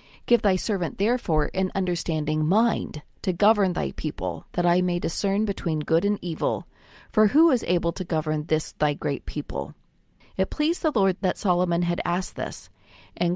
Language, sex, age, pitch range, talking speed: English, female, 40-59, 160-205 Hz, 175 wpm